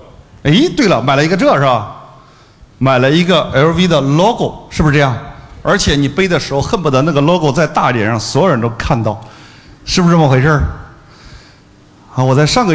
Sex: male